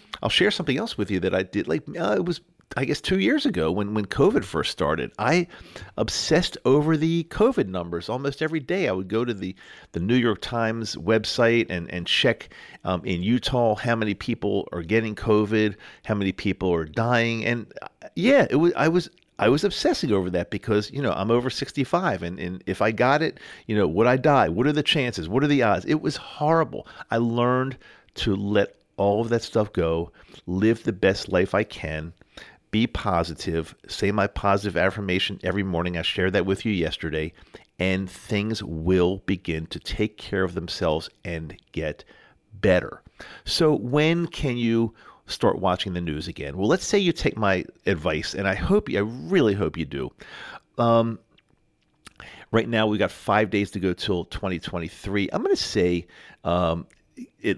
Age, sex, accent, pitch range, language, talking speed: 50-69, male, American, 90-120 Hz, English, 185 wpm